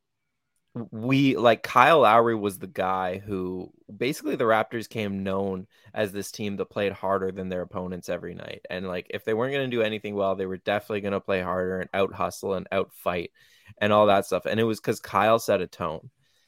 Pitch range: 95-115 Hz